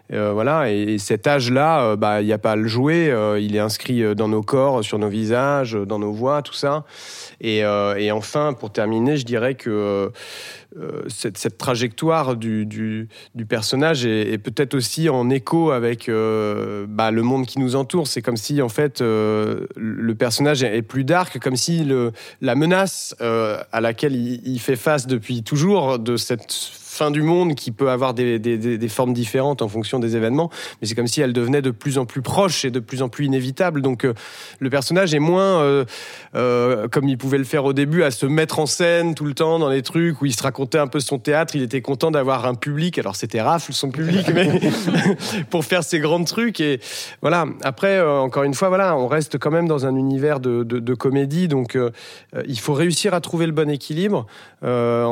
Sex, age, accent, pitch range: male, 30-49, French, 115-150 Hz